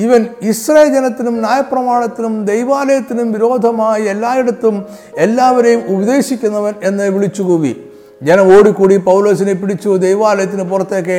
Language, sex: Malayalam, male